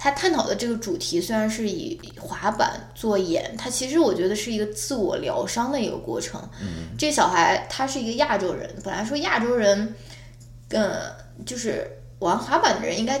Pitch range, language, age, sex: 180-235 Hz, Chinese, 20-39, female